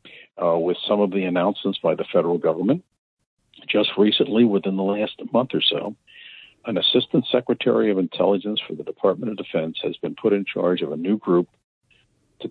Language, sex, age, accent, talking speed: English, male, 50-69, American, 180 wpm